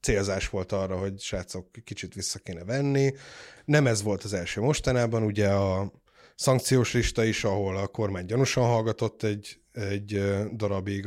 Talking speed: 150 wpm